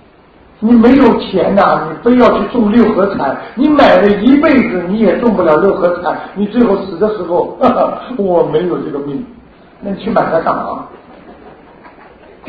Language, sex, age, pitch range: Chinese, male, 40-59, 180-245 Hz